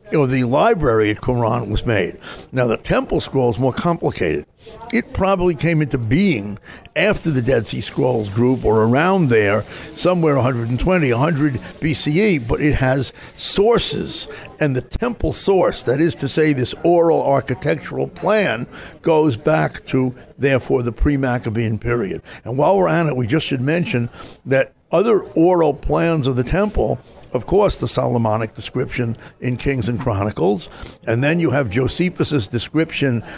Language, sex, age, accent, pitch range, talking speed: English, male, 60-79, American, 120-150 Hz, 155 wpm